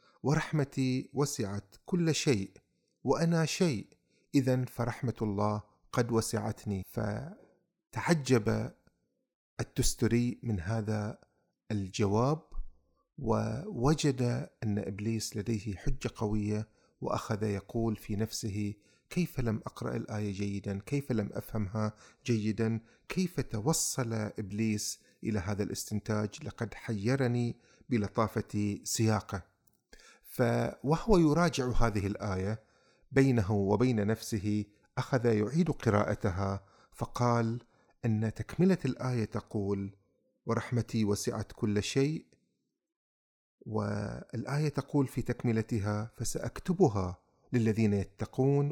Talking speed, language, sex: 85 wpm, Arabic, male